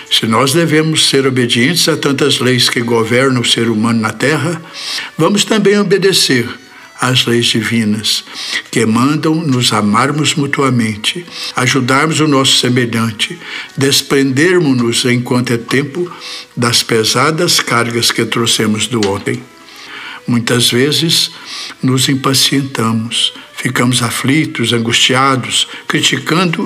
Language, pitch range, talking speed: Portuguese, 120-155 Hz, 110 wpm